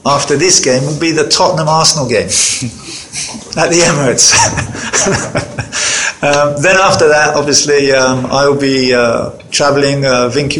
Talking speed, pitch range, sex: 140 wpm, 140-170 Hz, male